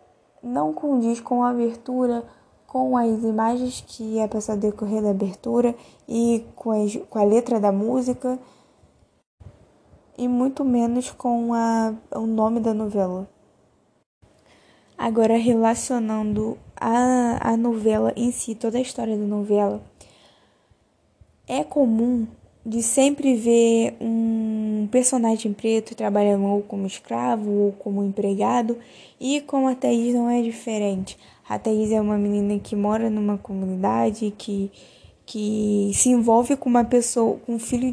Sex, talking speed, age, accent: female, 135 wpm, 10-29, Brazilian